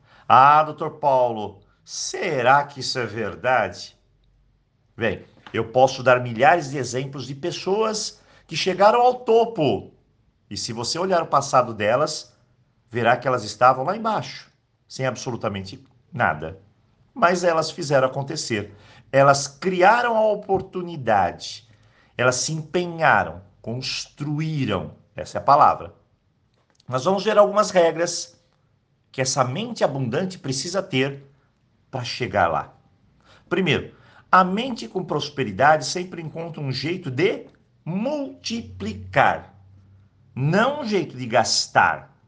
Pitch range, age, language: 120-180 Hz, 50-69, Portuguese